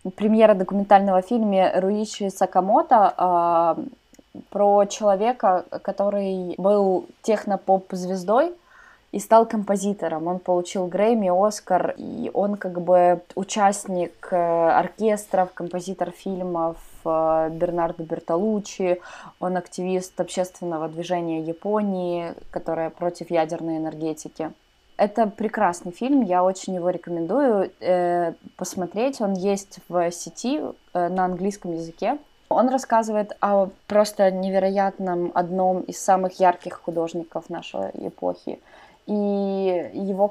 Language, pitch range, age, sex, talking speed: Russian, 175-210 Hz, 20-39, female, 100 wpm